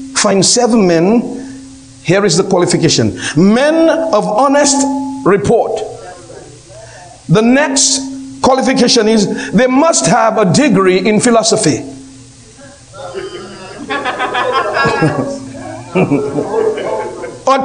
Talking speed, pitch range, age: 80 wpm, 180-290 Hz, 60-79